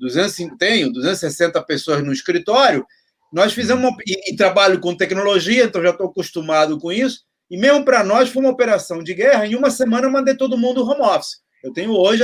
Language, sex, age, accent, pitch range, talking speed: Portuguese, male, 30-49, Brazilian, 175-245 Hz, 200 wpm